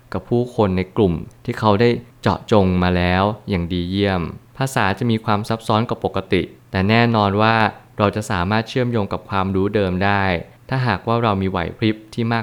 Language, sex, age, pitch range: Thai, male, 20-39, 95-115 Hz